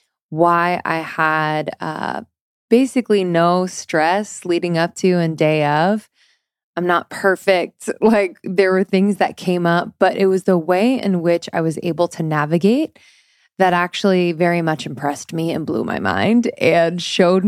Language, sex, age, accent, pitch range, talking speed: English, female, 20-39, American, 165-195 Hz, 160 wpm